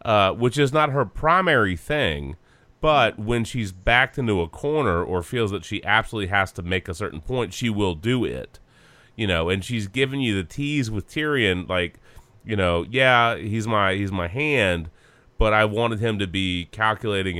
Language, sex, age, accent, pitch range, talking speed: English, male, 30-49, American, 90-110 Hz, 190 wpm